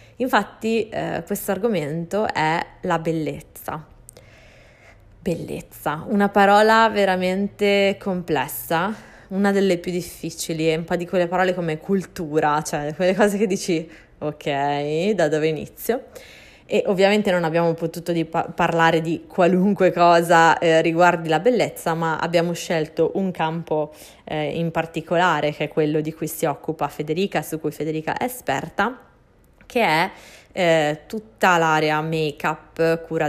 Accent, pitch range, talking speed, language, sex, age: native, 155-185 Hz, 135 wpm, Italian, female, 20-39